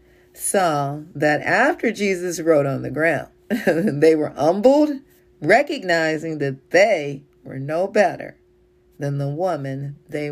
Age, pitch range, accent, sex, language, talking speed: 40-59, 140-185 Hz, American, female, English, 120 wpm